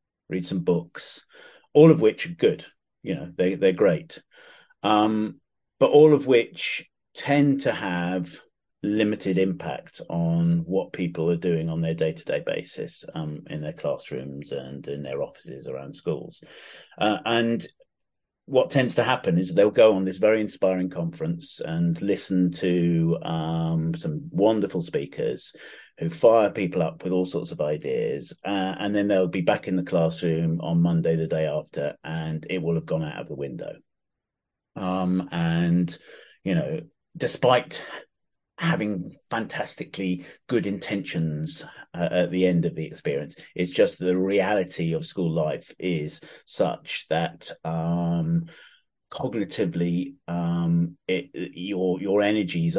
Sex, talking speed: male, 145 wpm